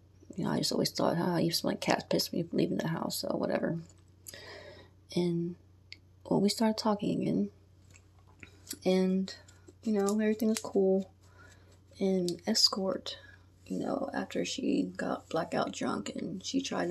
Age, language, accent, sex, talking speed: 20-39, English, American, female, 155 wpm